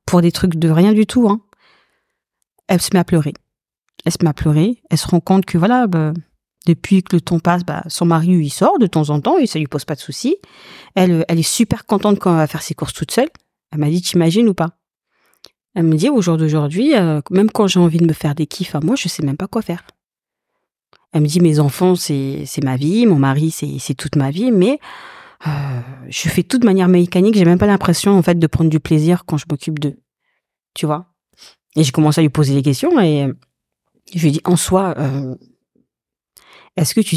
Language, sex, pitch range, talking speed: French, female, 150-190 Hz, 240 wpm